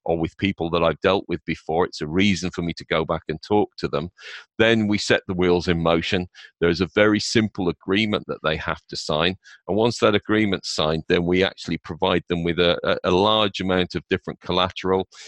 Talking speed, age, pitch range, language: 220 wpm, 40-59, 85-100 Hz, English